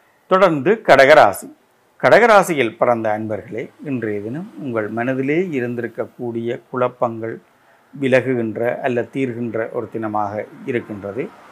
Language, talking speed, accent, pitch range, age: Tamil, 85 wpm, native, 115-135 Hz, 50-69